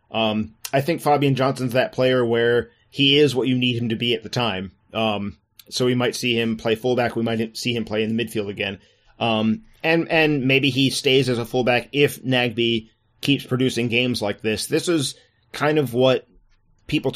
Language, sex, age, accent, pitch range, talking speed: English, male, 30-49, American, 110-130 Hz, 205 wpm